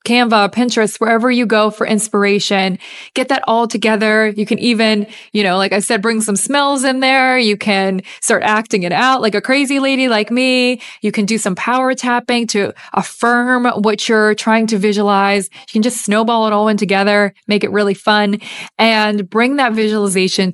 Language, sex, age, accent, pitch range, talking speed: English, female, 20-39, American, 200-230 Hz, 190 wpm